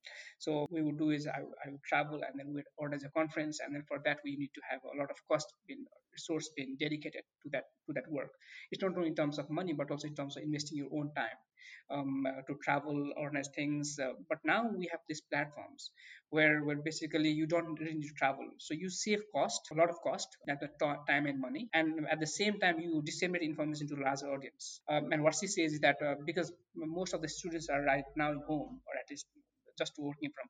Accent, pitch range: Indian, 145-175 Hz